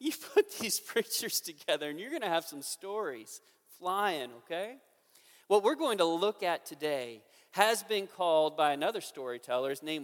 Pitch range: 145-215 Hz